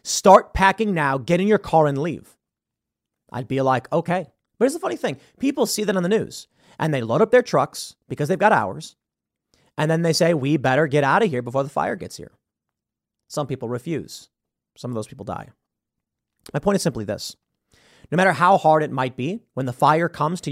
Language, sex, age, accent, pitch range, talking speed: English, male, 30-49, American, 140-205 Hz, 215 wpm